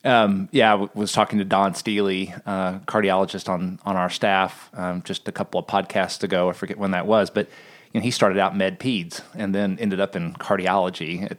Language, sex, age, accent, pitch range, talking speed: English, male, 30-49, American, 90-105 Hz, 220 wpm